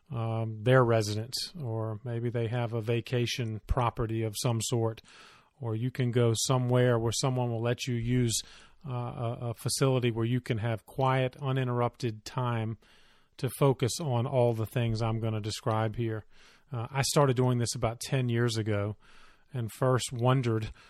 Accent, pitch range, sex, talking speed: American, 115-125 Hz, male, 165 wpm